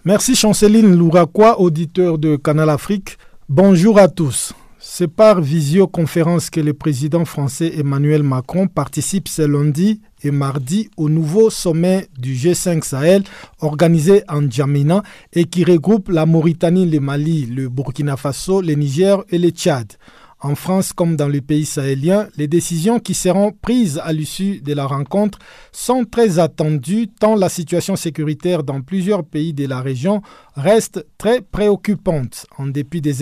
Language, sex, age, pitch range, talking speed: French, male, 50-69, 150-195 Hz, 150 wpm